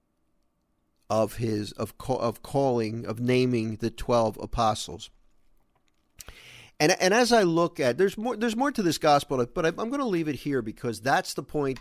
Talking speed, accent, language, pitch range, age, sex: 185 wpm, American, English, 120-170 Hz, 50-69, male